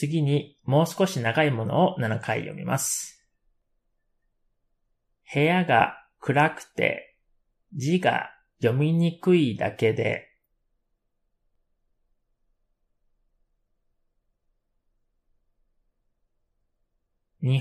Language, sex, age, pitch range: Japanese, male, 30-49, 115-160 Hz